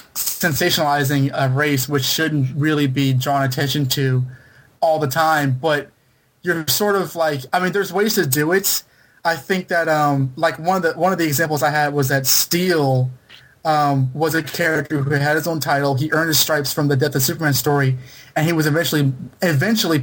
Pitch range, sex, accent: 140-175 Hz, male, American